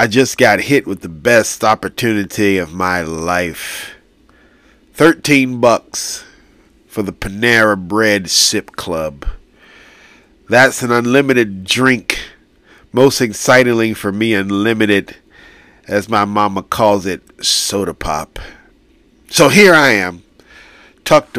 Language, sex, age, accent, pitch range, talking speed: English, male, 50-69, American, 100-130 Hz, 110 wpm